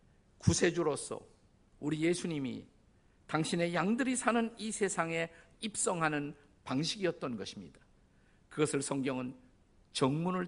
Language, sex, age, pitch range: Korean, male, 50-69, 135-180 Hz